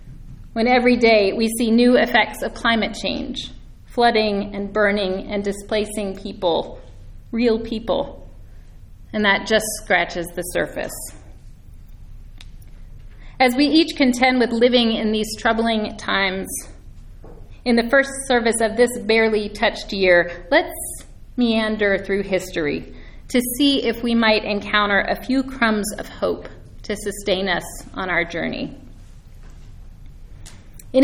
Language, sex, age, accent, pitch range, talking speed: English, female, 40-59, American, 185-235 Hz, 125 wpm